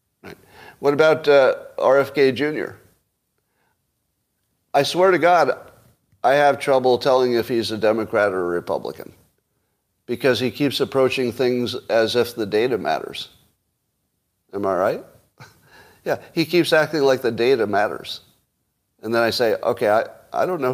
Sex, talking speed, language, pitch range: male, 145 wpm, English, 110-150 Hz